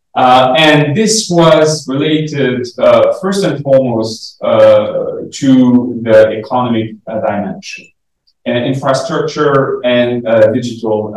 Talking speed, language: 105 wpm, English